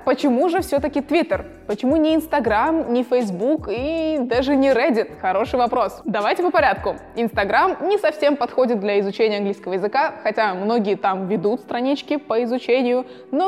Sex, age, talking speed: female, 20-39, 150 wpm